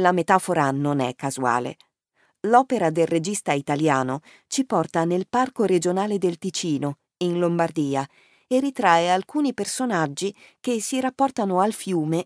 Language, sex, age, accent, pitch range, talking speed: Italian, female, 40-59, native, 160-220 Hz, 130 wpm